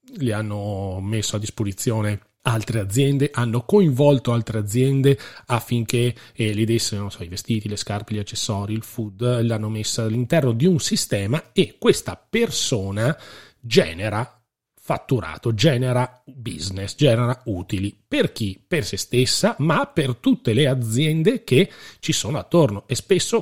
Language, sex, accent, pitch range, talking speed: Italian, male, native, 105-135 Hz, 145 wpm